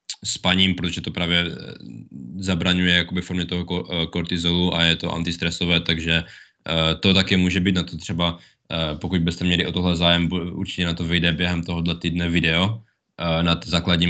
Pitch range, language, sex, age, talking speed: 85-100 Hz, Czech, male, 20-39, 155 wpm